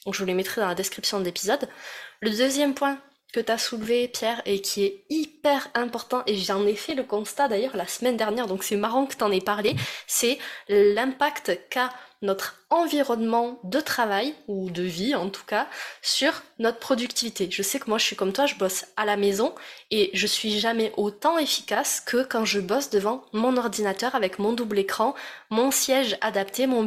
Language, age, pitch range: French, 20-39, 200-260 Hz